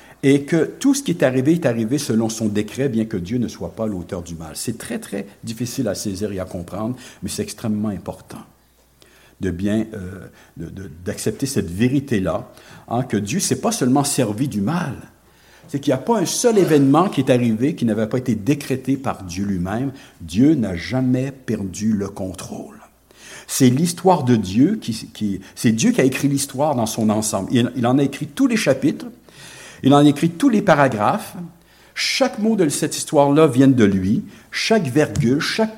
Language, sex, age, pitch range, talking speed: English, male, 60-79, 100-145 Hz, 195 wpm